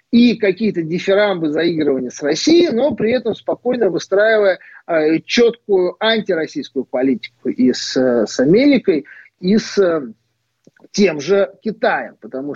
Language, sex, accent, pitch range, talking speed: Russian, male, native, 145-235 Hz, 115 wpm